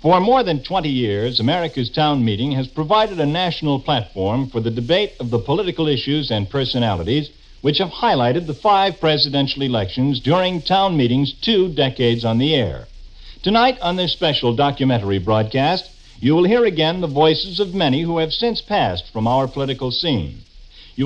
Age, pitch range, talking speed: 60-79, 125-180 Hz, 170 wpm